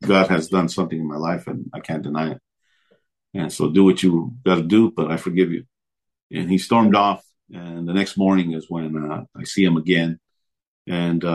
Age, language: 50-69, English